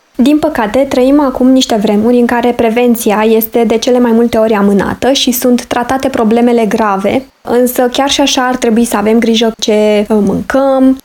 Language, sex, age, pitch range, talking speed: Romanian, female, 20-39, 215-265 Hz, 175 wpm